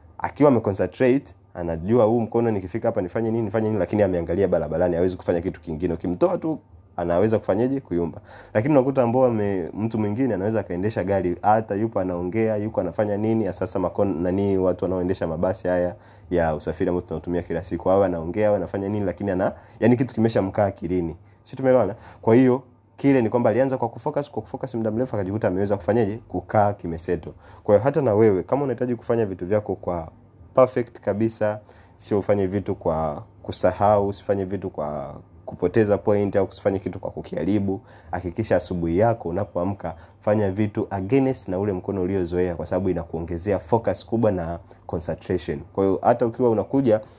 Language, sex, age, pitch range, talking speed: Swahili, male, 30-49, 90-110 Hz, 170 wpm